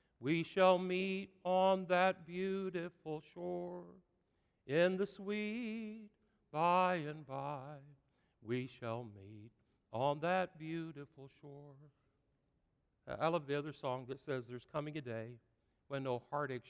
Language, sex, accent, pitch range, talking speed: English, male, American, 130-190 Hz, 125 wpm